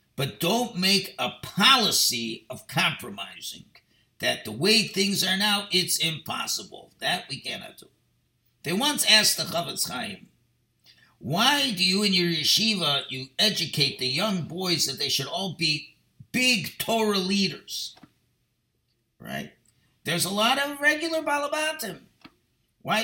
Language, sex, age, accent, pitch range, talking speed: English, male, 50-69, American, 170-225 Hz, 135 wpm